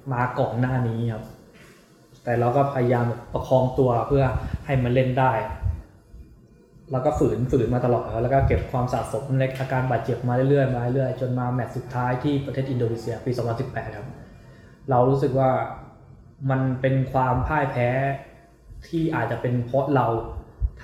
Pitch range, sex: 120-140 Hz, male